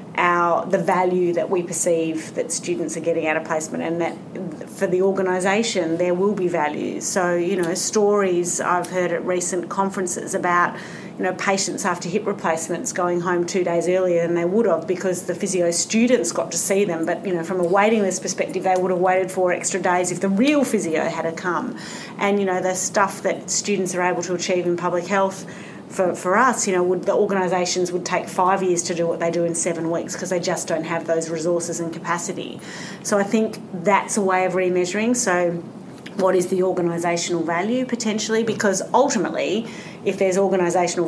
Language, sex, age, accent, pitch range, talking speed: English, female, 30-49, Australian, 170-195 Hz, 205 wpm